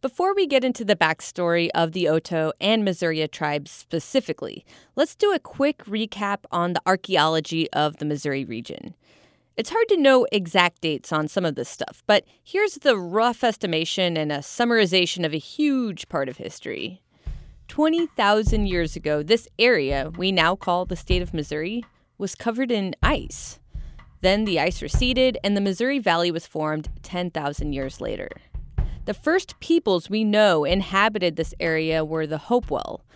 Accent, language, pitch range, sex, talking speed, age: American, English, 160-235 Hz, female, 165 wpm, 20-39